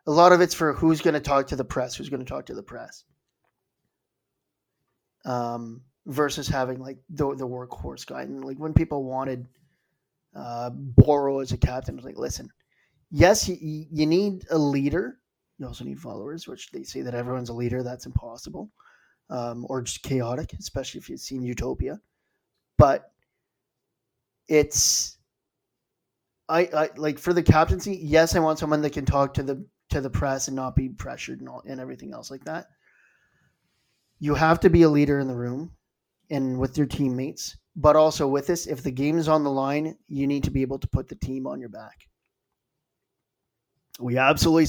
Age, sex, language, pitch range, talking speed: 30-49, male, English, 130-155 Hz, 185 wpm